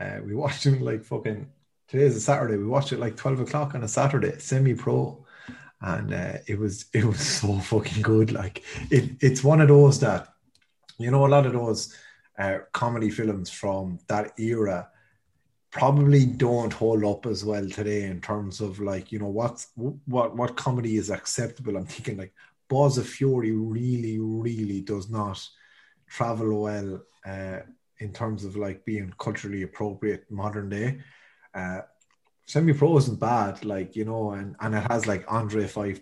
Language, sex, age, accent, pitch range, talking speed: English, male, 30-49, Irish, 105-125 Hz, 170 wpm